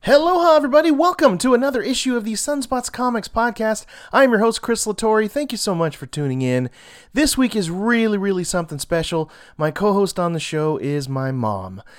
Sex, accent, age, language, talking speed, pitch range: male, American, 30-49, English, 190 wpm, 140-200 Hz